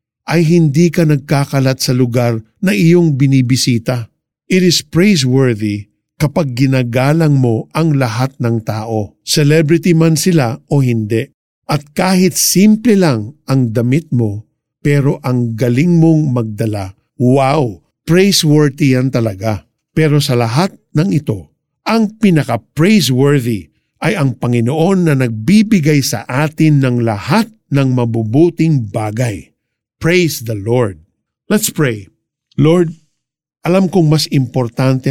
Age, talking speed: 50-69, 120 wpm